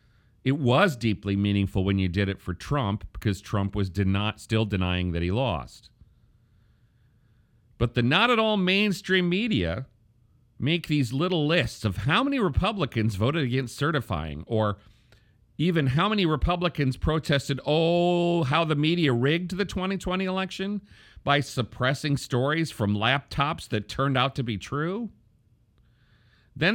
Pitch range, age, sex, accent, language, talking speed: 110-160 Hz, 40-59, male, American, English, 145 wpm